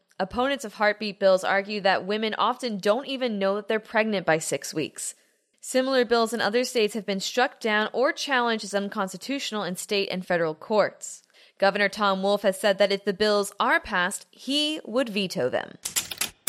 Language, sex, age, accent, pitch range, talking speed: English, female, 20-39, American, 190-230 Hz, 180 wpm